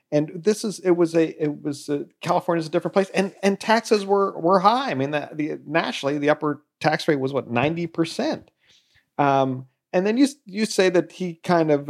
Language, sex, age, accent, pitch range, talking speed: English, male, 40-59, American, 110-170 Hz, 205 wpm